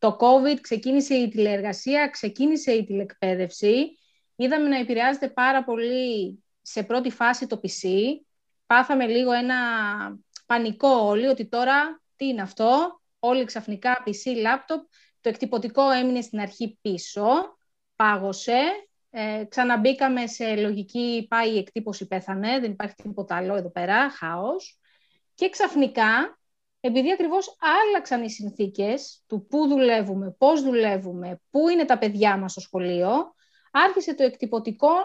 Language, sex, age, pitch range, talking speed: Greek, female, 30-49, 215-280 Hz, 130 wpm